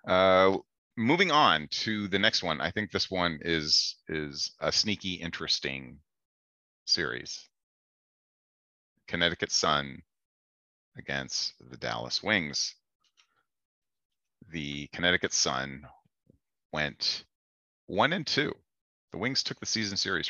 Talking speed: 105 wpm